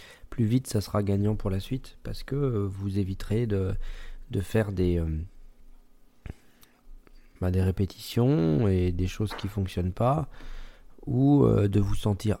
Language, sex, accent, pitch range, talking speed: French, male, French, 95-120 Hz, 140 wpm